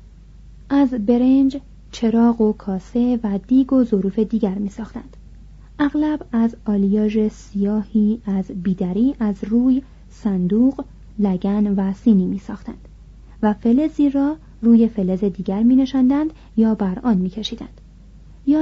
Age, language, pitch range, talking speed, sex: 30-49, Persian, 205-260 Hz, 115 wpm, female